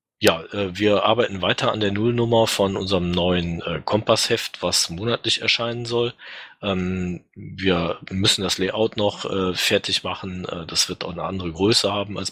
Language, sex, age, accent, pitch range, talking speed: German, male, 40-59, German, 95-120 Hz, 145 wpm